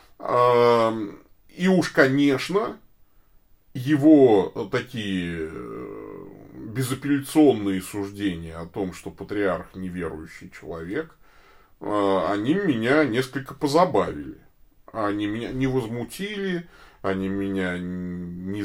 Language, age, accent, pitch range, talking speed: Russian, 20-39, native, 95-130 Hz, 75 wpm